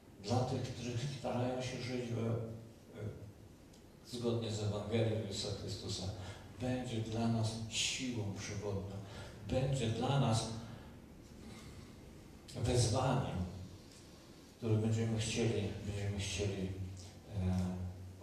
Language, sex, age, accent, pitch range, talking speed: Polish, male, 50-69, native, 95-120 Hz, 90 wpm